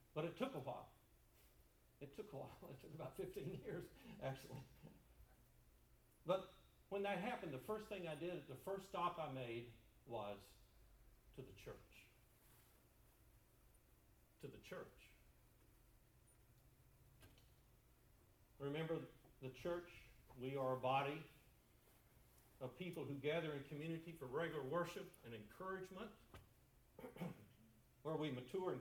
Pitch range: 115-155 Hz